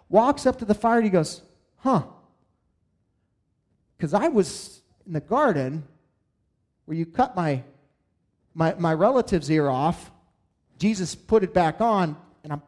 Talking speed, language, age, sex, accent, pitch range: 145 wpm, English, 30-49, male, American, 160-225 Hz